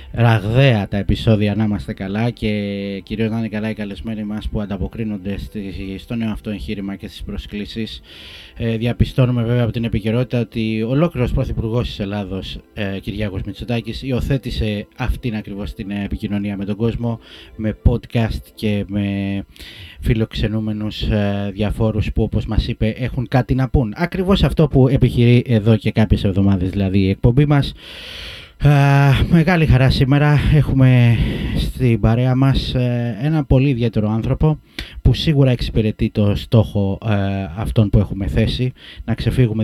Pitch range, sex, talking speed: 100-120 Hz, male, 140 wpm